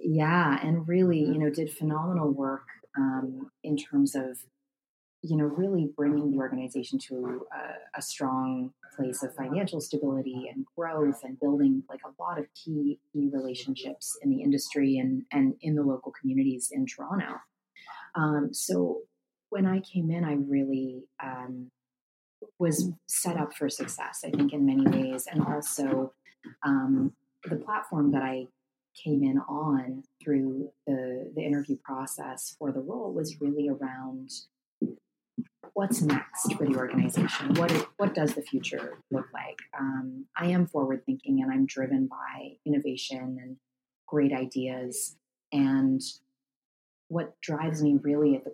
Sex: female